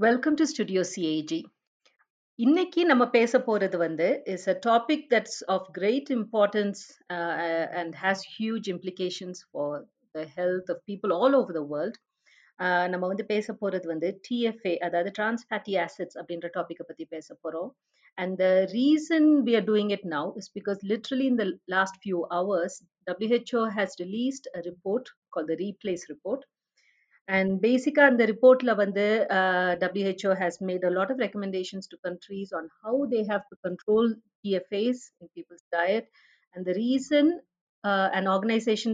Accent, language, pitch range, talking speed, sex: native, Tamil, 180-230 Hz, 160 wpm, female